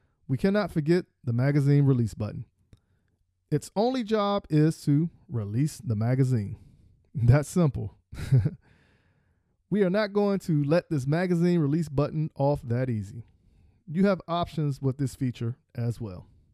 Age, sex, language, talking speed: 40-59, male, English, 140 wpm